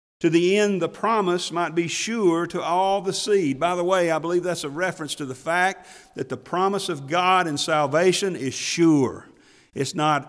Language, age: English, 50-69